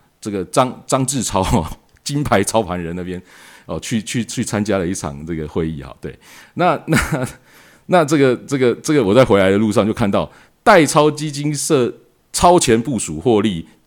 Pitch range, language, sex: 90-145 Hz, Chinese, male